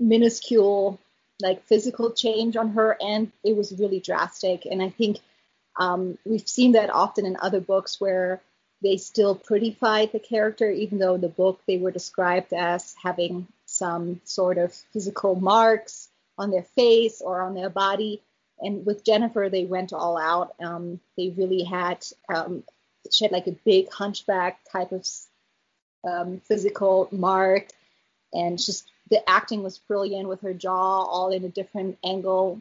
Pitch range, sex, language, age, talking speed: 185-215 Hz, female, English, 30-49, 160 wpm